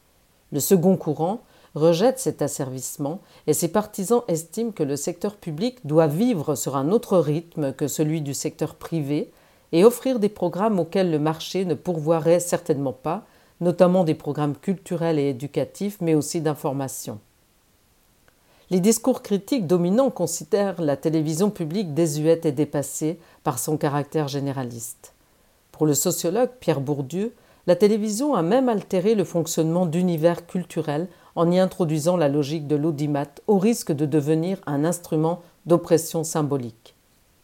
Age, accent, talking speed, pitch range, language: 50-69, French, 145 wpm, 150-190 Hz, French